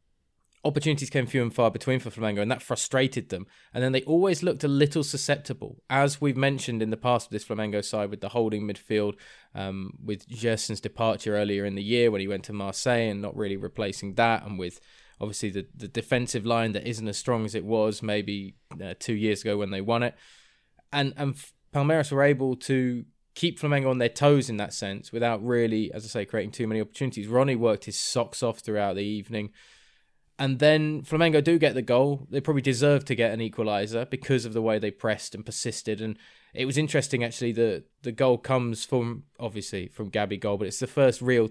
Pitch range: 105-130 Hz